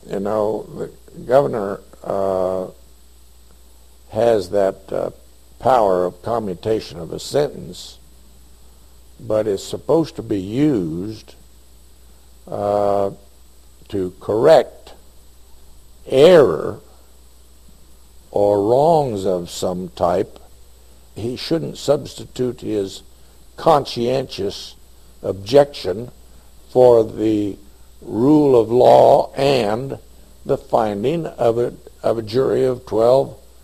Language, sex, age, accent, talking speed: English, male, 60-79, American, 90 wpm